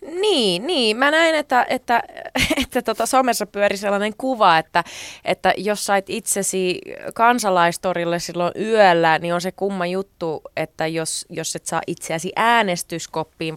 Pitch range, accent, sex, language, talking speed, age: 175-245 Hz, native, female, Finnish, 145 wpm, 20-39